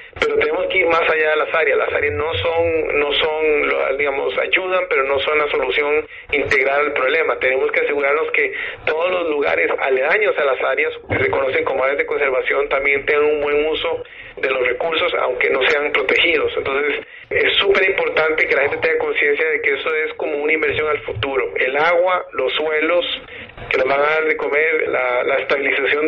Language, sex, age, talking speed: Spanish, male, 40-59, 200 wpm